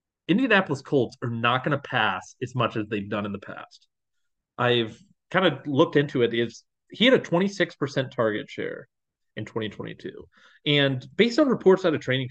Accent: American